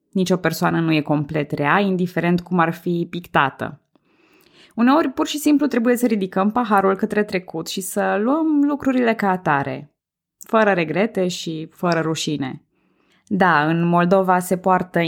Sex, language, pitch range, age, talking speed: female, Romanian, 160-225 Hz, 20-39, 145 wpm